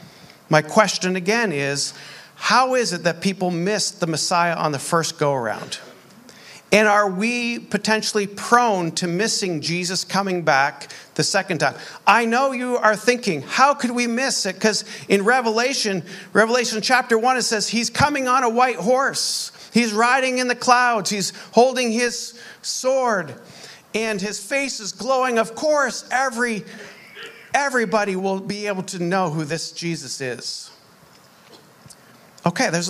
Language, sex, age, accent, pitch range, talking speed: English, male, 50-69, American, 170-235 Hz, 150 wpm